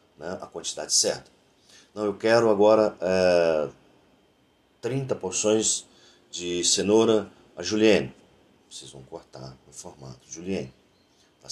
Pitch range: 85-110 Hz